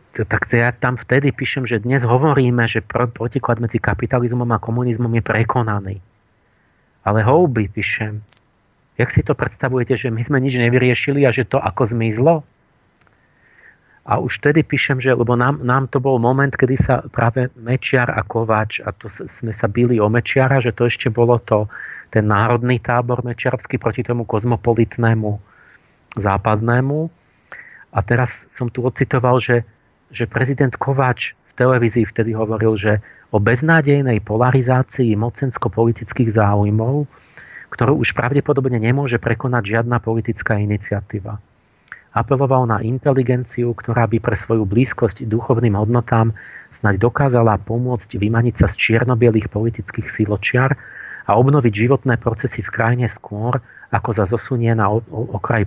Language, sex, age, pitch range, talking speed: Slovak, male, 40-59, 110-130 Hz, 140 wpm